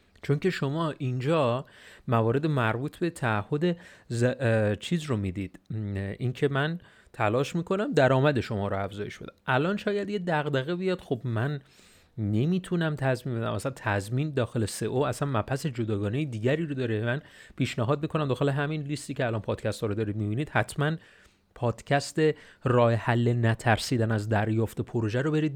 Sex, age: male, 30-49